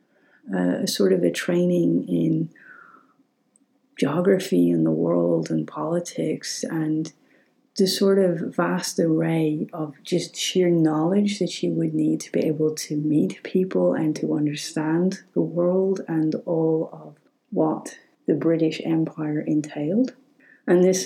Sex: female